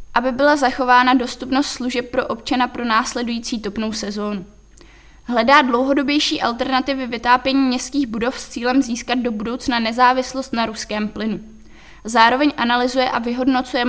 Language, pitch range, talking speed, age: Czech, 235-265 Hz, 130 wpm, 20-39